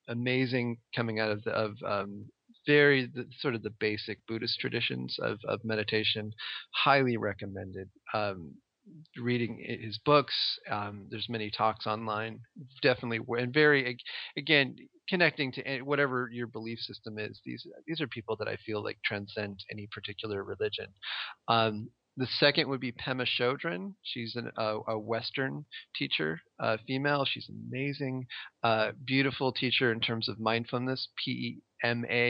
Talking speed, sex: 145 wpm, male